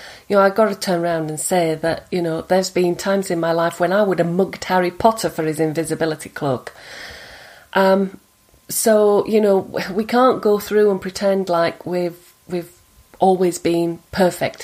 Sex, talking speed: female, 185 wpm